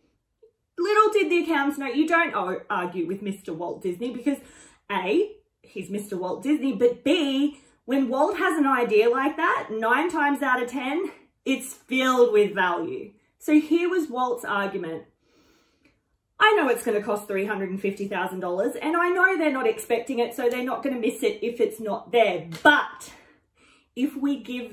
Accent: Australian